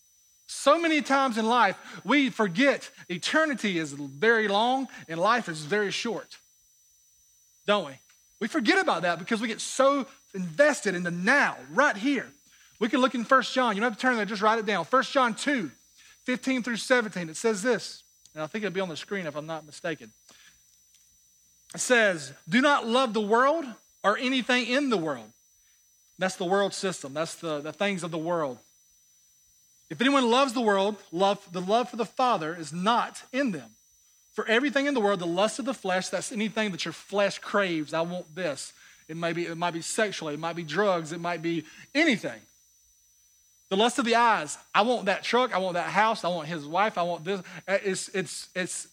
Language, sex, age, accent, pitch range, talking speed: English, male, 40-59, American, 170-240 Hz, 200 wpm